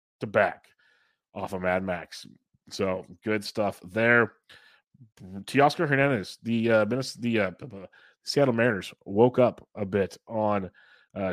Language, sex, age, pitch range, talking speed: English, male, 30-49, 100-115 Hz, 130 wpm